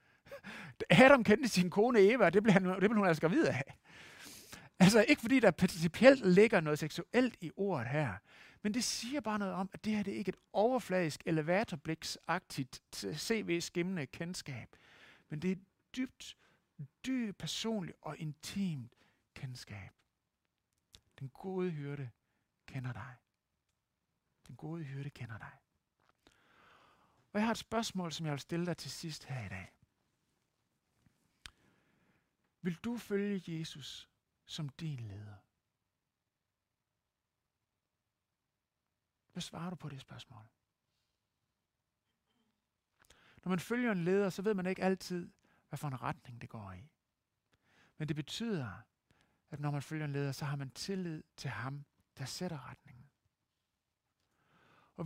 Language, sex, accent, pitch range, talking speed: Danish, male, native, 130-190 Hz, 135 wpm